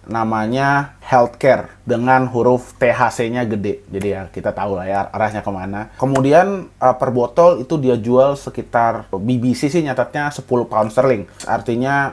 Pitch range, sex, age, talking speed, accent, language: 110-135 Hz, male, 20-39, 135 wpm, native, Indonesian